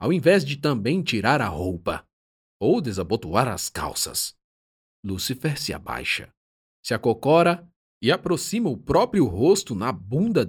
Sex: male